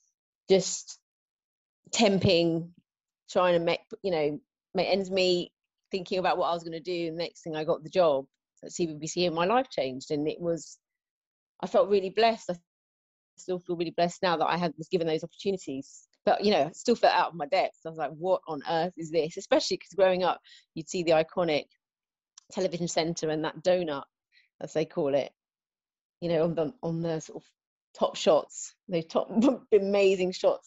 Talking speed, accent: 200 wpm, British